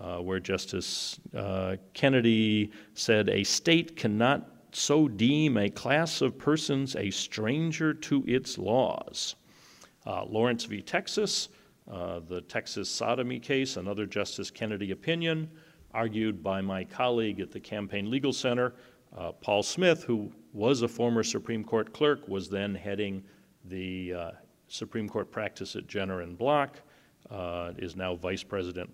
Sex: male